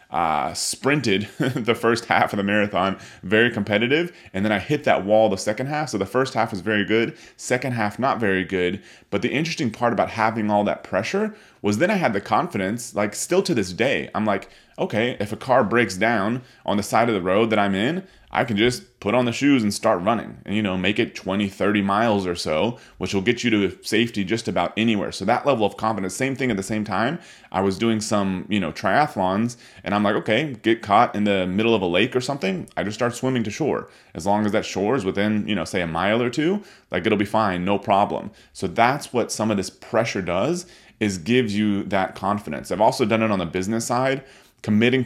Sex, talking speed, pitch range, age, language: male, 235 wpm, 100-120 Hz, 30-49, English